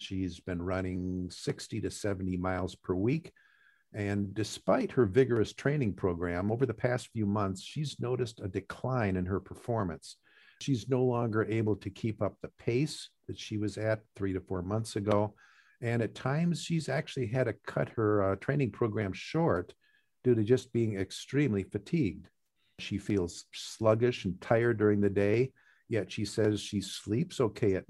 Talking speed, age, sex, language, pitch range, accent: 170 wpm, 50-69, male, English, 95-125 Hz, American